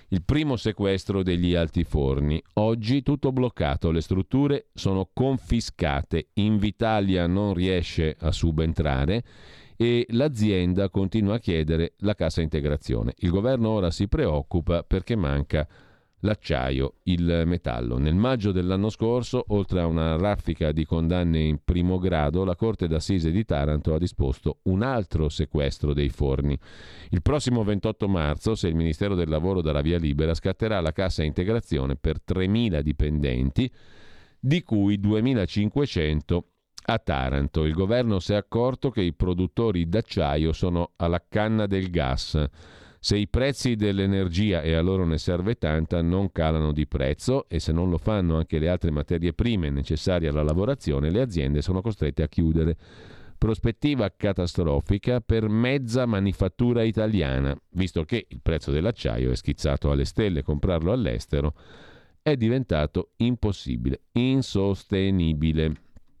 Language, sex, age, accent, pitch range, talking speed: Italian, male, 40-59, native, 80-105 Hz, 140 wpm